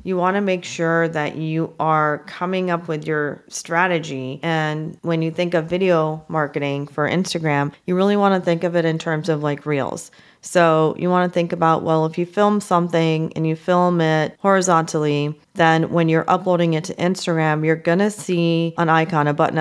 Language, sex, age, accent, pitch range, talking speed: English, female, 30-49, American, 155-180 Hz, 200 wpm